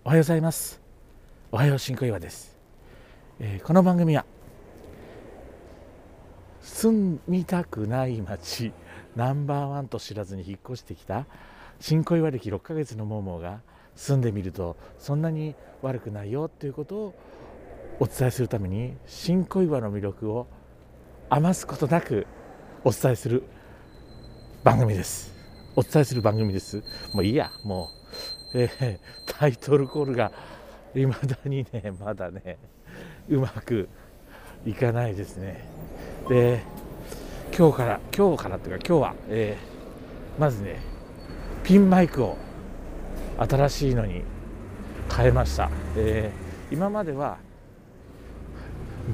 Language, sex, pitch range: Japanese, male, 100-145 Hz